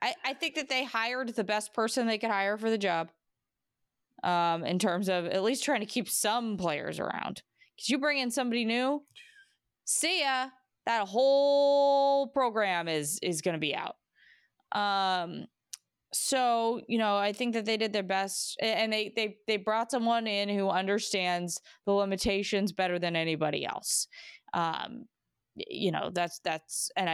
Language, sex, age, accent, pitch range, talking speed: English, female, 20-39, American, 195-275 Hz, 165 wpm